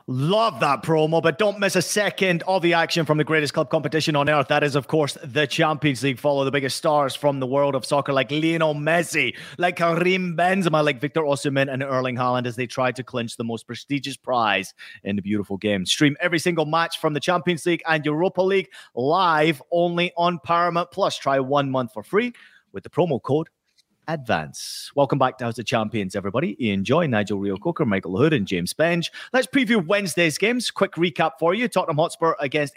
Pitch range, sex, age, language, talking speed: 130-175 Hz, male, 30-49, English, 205 wpm